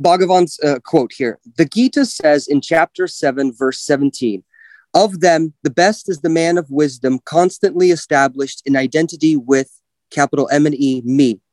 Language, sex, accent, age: English, male, American, 30-49